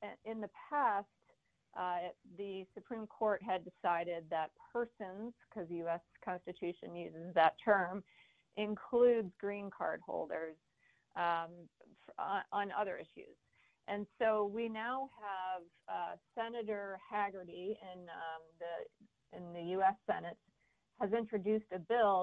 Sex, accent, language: female, American, English